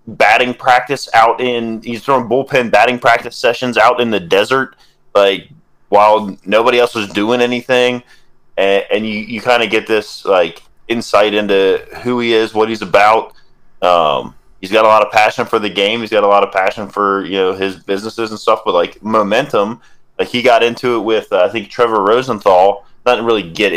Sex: male